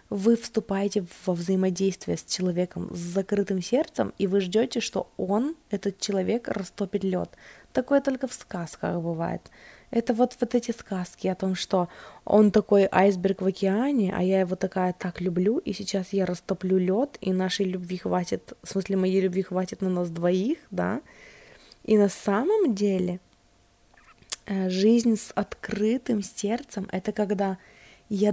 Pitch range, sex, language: 180-210 Hz, female, Russian